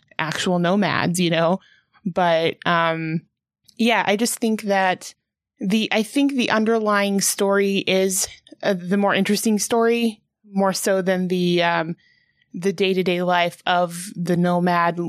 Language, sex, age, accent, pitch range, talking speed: English, female, 20-39, American, 175-205 Hz, 135 wpm